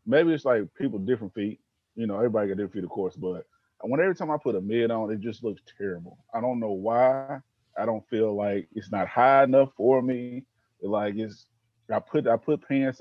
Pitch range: 105-130 Hz